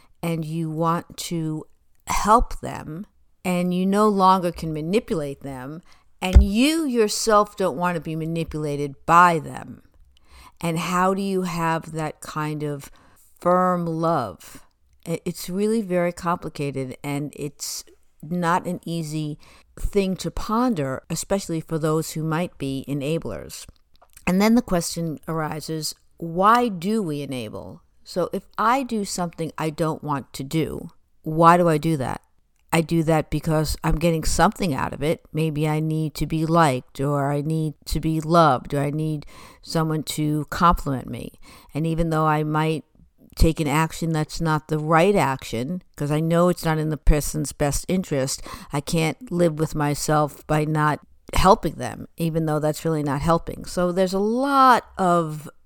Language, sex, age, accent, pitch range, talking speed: English, female, 60-79, American, 150-175 Hz, 160 wpm